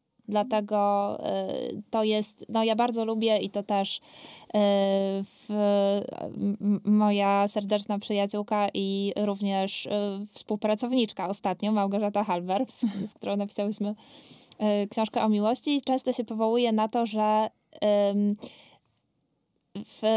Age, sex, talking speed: 10-29, female, 100 wpm